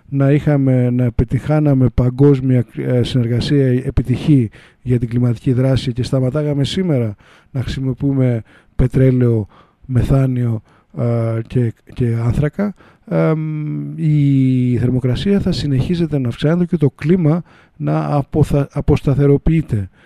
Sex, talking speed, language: male, 90 wpm, Greek